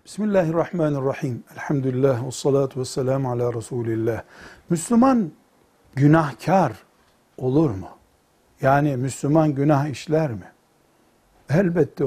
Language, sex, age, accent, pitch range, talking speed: Turkish, male, 60-79, native, 125-180 Hz, 80 wpm